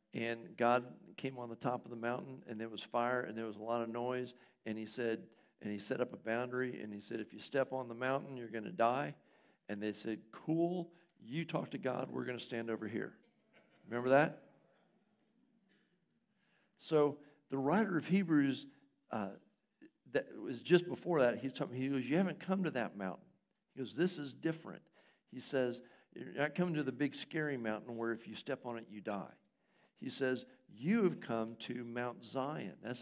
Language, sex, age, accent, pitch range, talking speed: English, male, 60-79, American, 120-155 Hz, 200 wpm